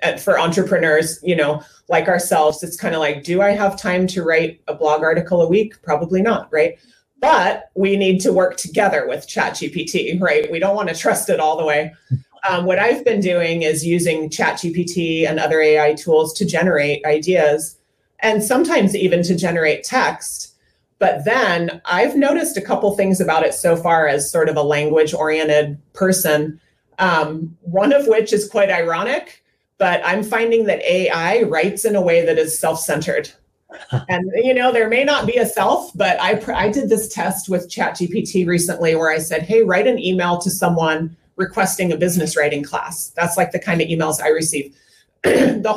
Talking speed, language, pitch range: 185 wpm, English, 160-205 Hz